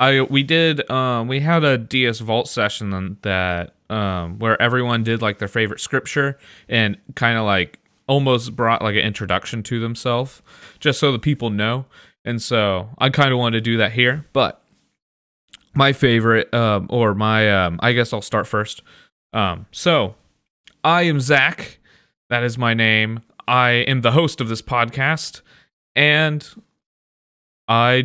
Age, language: 20-39, English